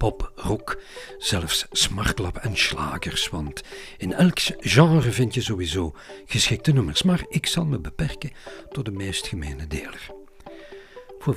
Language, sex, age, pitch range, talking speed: Dutch, male, 50-69, 100-145 Hz, 135 wpm